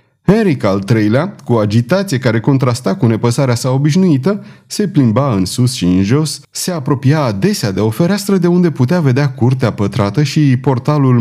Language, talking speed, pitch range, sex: Romanian, 170 wpm, 110-150 Hz, male